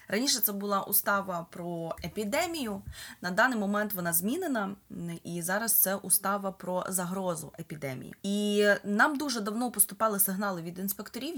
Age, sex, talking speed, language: 20-39, female, 135 wpm, Ukrainian